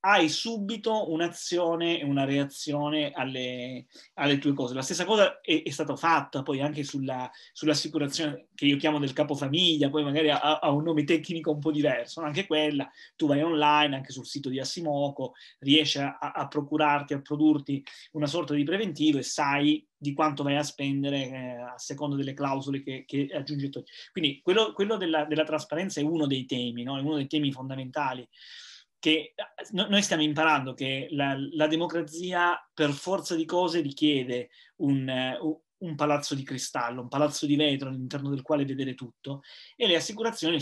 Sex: male